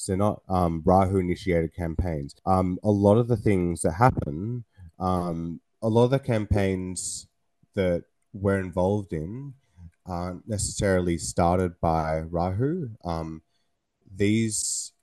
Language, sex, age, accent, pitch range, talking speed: English, male, 20-39, Australian, 85-100 Hz, 125 wpm